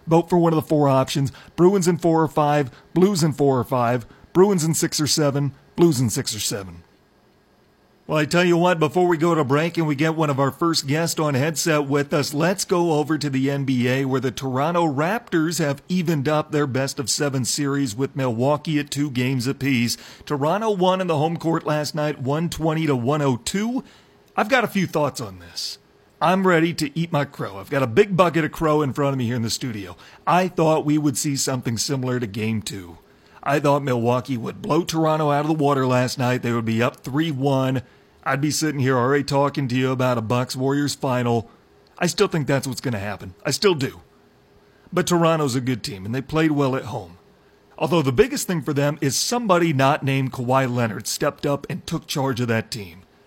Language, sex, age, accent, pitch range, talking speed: English, male, 40-59, American, 130-160 Hz, 220 wpm